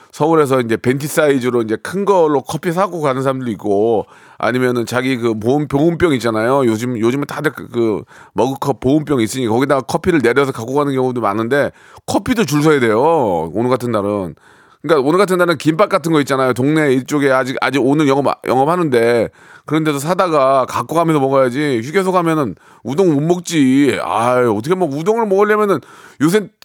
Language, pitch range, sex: Korean, 125-190 Hz, male